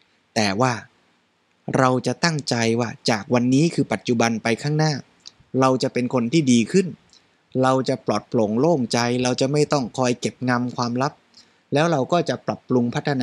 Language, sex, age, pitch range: Thai, male, 20-39, 120-145 Hz